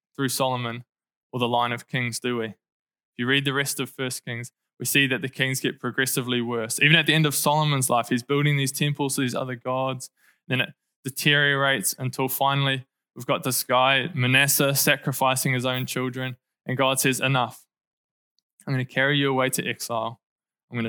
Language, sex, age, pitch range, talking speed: English, male, 20-39, 125-140 Hz, 200 wpm